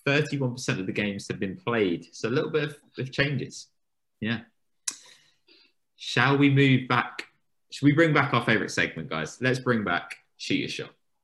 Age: 20-39